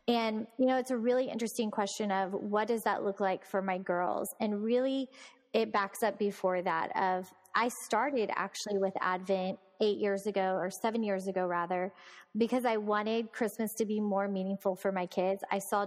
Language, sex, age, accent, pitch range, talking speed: English, female, 20-39, American, 195-240 Hz, 195 wpm